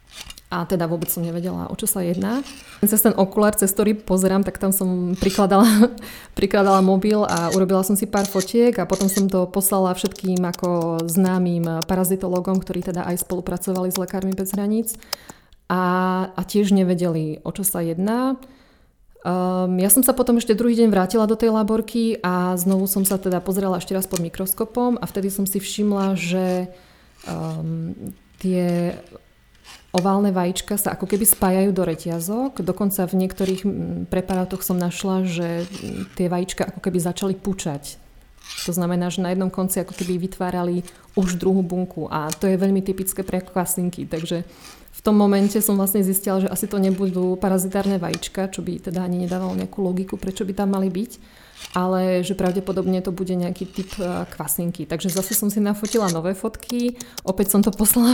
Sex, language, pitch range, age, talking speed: female, Czech, 180-200 Hz, 20-39, 170 wpm